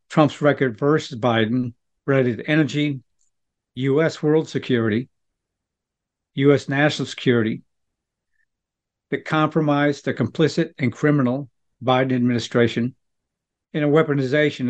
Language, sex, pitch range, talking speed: English, male, 125-155 Hz, 100 wpm